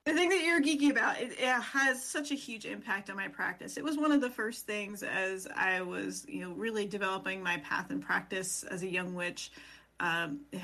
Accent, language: American, English